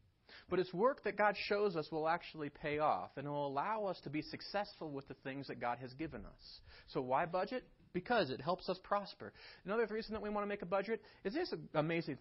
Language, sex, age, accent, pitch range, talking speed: English, male, 30-49, American, 145-200 Hz, 225 wpm